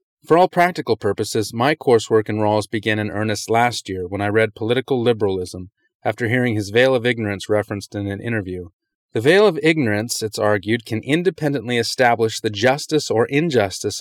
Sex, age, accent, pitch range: male, 30-49, American, 105-145 Hz